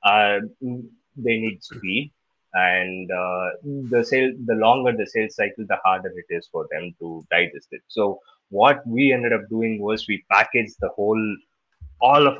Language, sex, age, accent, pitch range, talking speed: English, male, 20-39, Indian, 90-110 Hz, 170 wpm